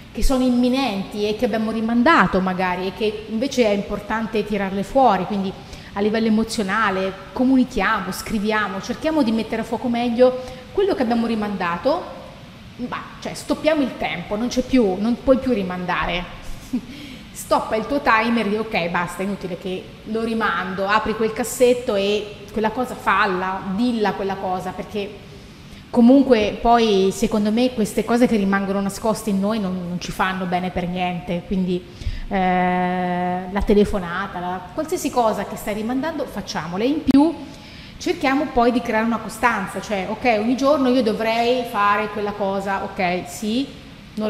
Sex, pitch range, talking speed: female, 195-245 Hz, 155 wpm